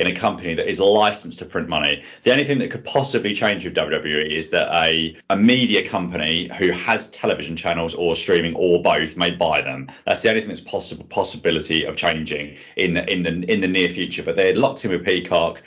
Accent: British